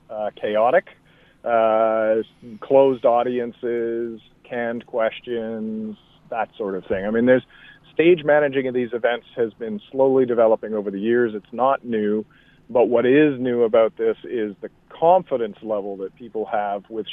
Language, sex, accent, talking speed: English, male, American, 150 wpm